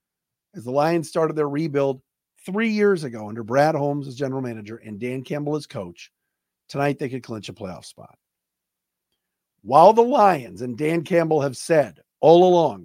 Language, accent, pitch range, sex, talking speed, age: English, American, 125-170 Hz, male, 175 wpm, 50-69